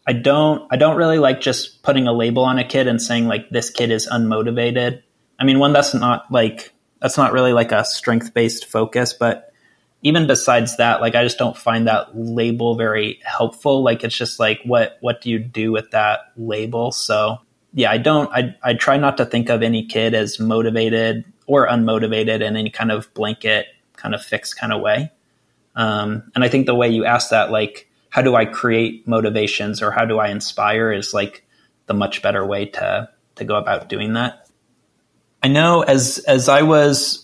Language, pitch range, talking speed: English, 110-125 Hz, 200 wpm